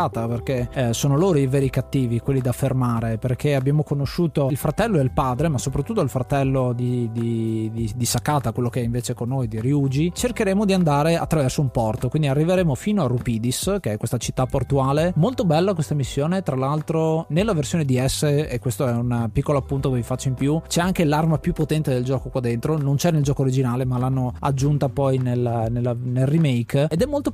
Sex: male